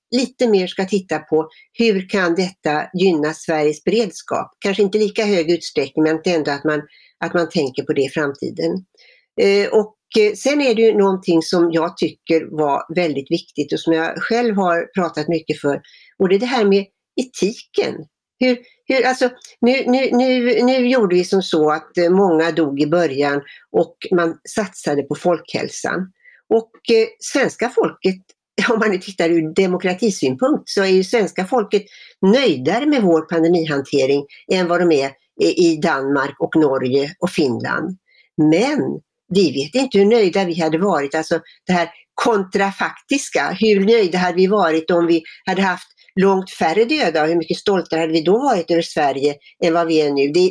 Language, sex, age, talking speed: Swedish, female, 60-79, 175 wpm